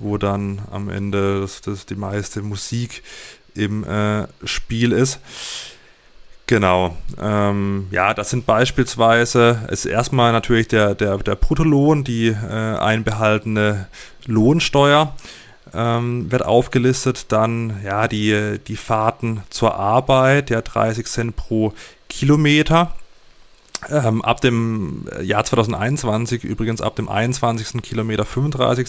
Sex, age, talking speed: male, 30-49, 115 wpm